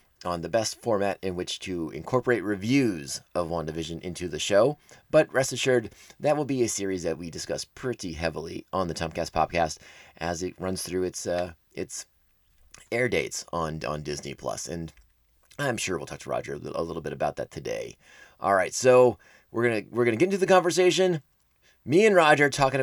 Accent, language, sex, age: American, English, male, 30-49